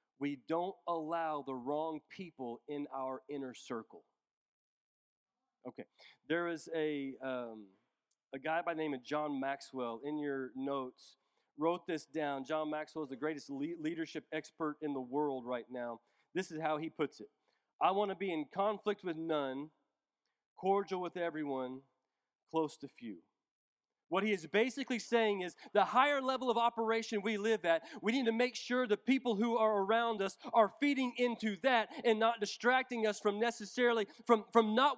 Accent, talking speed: American, 170 wpm